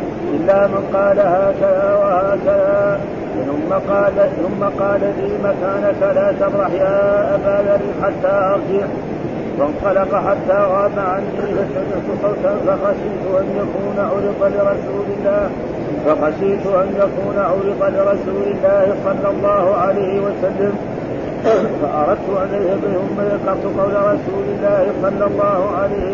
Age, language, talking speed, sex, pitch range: 50-69, Arabic, 110 wpm, male, 195-200 Hz